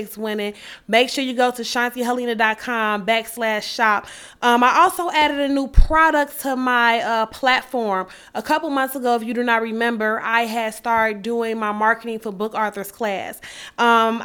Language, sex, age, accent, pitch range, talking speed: English, female, 20-39, American, 225-270 Hz, 170 wpm